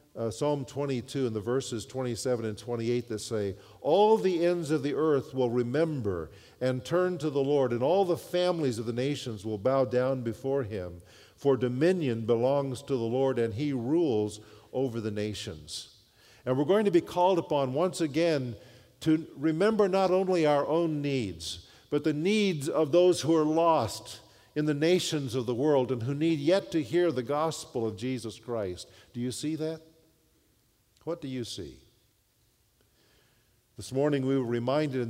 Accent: American